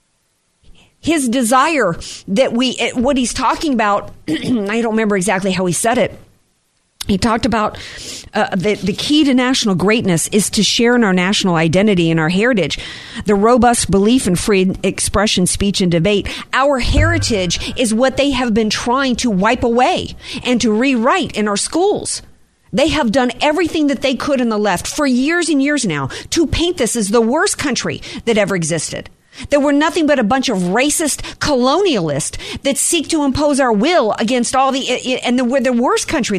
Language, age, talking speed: English, 50-69, 180 wpm